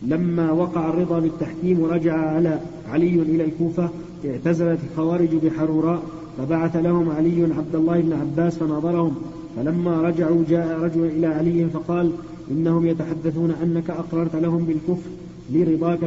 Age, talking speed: 40-59, 125 wpm